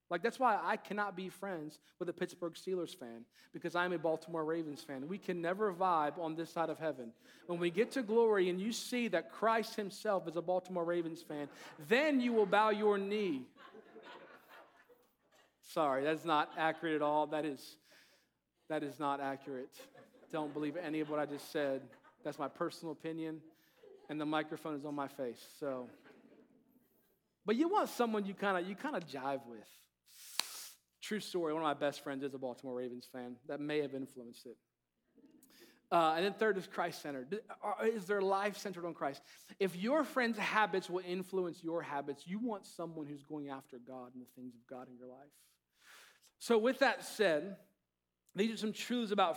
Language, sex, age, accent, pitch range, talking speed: English, male, 40-59, American, 150-200 Hz, 185 wpm